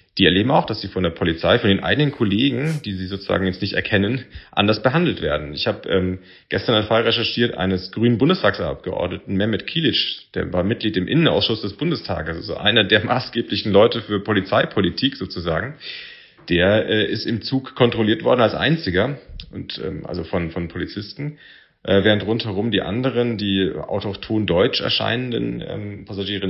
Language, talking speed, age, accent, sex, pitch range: German, 170 wpm, 30-49, German, male, 95-115 Hz